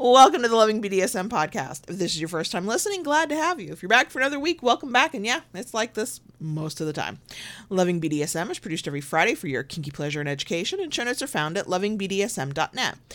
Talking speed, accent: 240 wpm, American